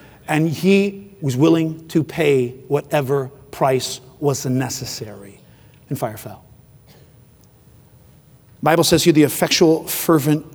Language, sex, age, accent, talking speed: English, male, 40-59, American, 120 wpm